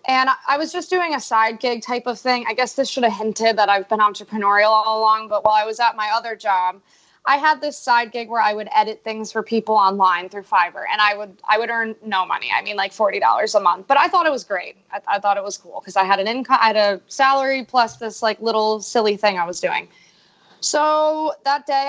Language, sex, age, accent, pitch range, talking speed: English, female, 20-39, American, 200-240 Hz, 260 wpm